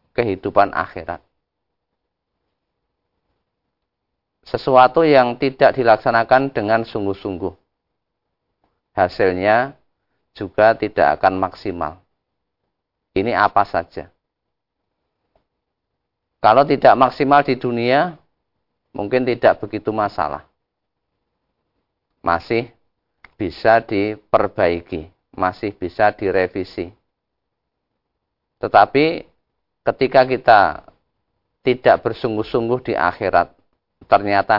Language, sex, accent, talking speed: Indonesian, male, native, 70 wpm